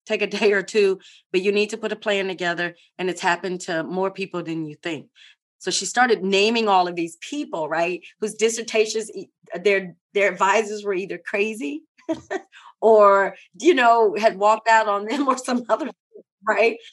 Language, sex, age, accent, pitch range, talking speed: English, female, 30-49, American, 180-215 Hz, 180 wpm